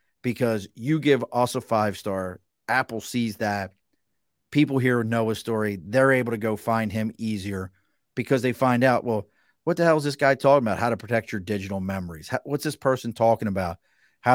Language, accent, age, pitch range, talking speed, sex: English, American, 40-59, 105-130 Hz, 190 wpm, male